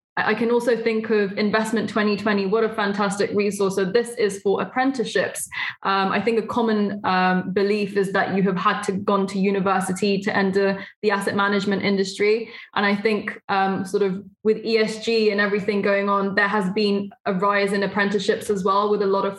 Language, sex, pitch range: English, female, 195-215 Hz